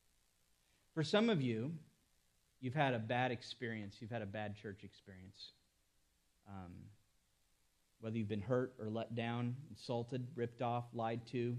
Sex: male